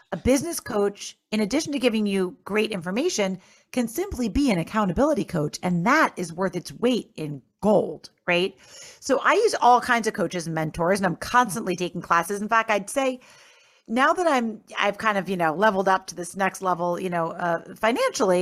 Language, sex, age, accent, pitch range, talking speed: English, female, 40-59, American, 185-240 Hz, 200 wpm